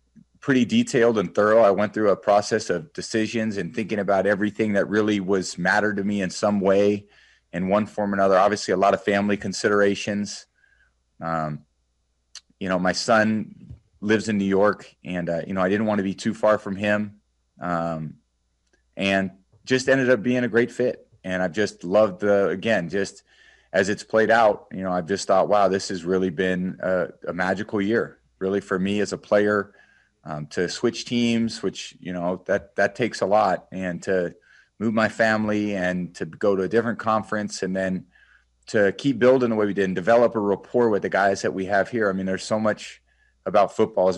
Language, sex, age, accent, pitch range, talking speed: English, male, 30-49, American, 90-105 Hz, 200 wpm